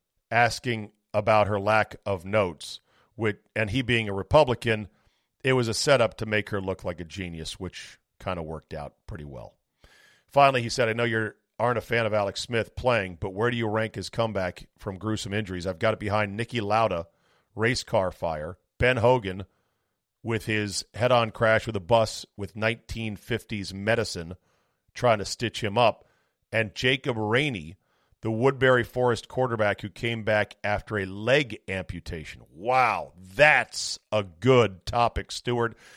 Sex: male